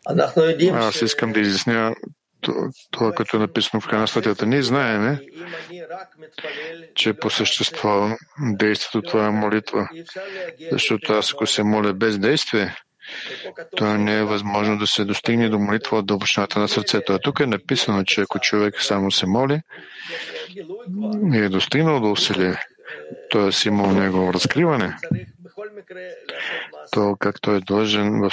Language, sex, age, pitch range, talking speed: English, male, 50-69, 105-145 Hz, 145 wpm